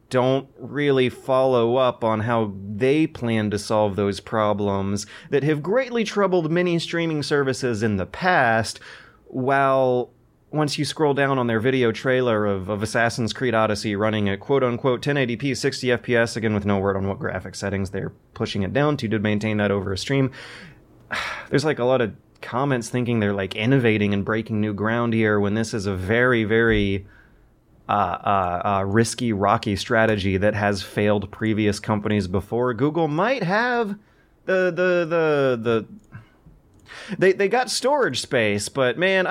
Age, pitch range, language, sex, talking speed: 30-49, 110-160 Hz, English, male, 165 wpm